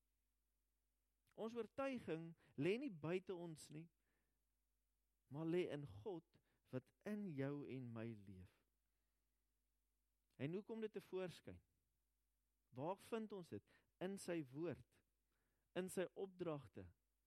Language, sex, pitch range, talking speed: English, male, 120-170 Hz, 115 wpm